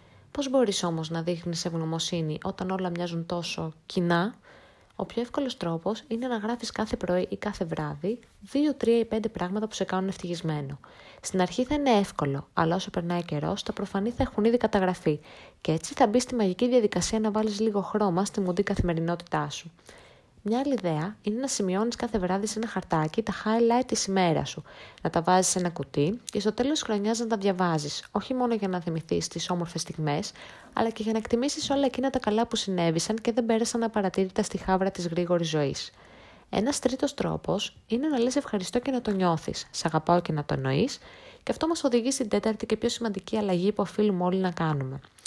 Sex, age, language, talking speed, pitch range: female, 20-39, Greek, 200 wpm, 175-230 Hz